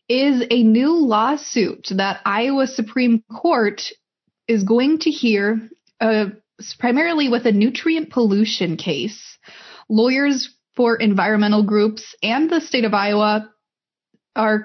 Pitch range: 200-245 Hz